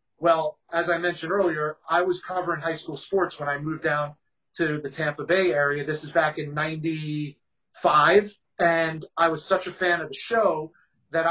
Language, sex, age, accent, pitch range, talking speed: English, male, 40-59, American, 155-180 Hz, 185 wpm